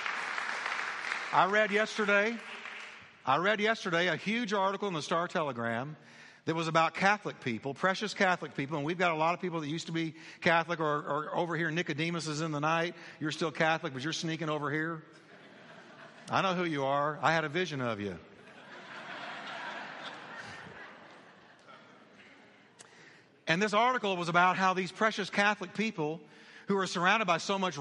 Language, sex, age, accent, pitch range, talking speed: English, male, 50-69, American, 160-205 Hz, 165 wpm